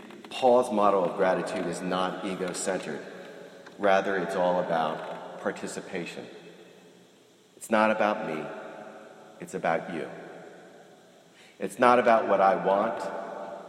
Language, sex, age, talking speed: English, male, 40-59, 115 wpm